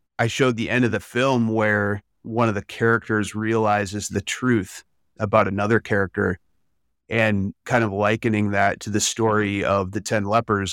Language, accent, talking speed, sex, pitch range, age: English, American, 170 wpm, male, 100-110 Hz, 30-49